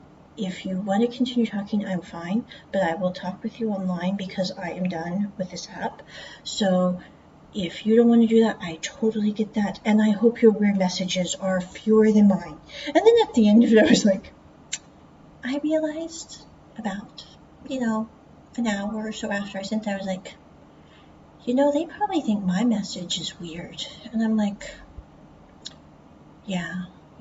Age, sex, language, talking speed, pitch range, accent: 40-59, female, English, 180 wpm, 185-225 Hz, American